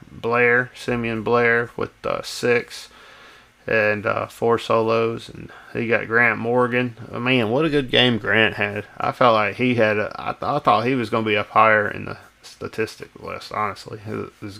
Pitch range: 110-120 Hz